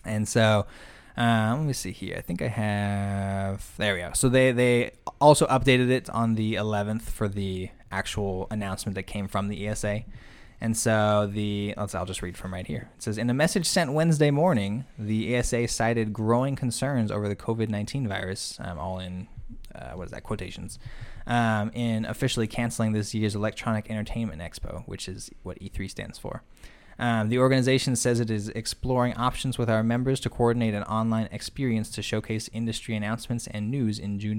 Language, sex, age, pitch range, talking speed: English, male, 20-39, 100-120 Hz, 185 wpm